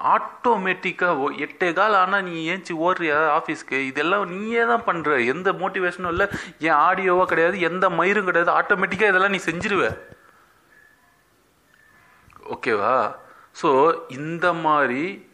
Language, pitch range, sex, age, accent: Tamil, 130-185 Hz, male, 30-49, native